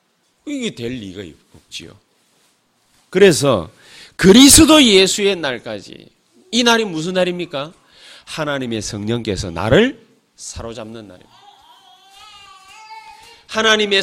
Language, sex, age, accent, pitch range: Korean, male, 30-49, native, 130-220 Hz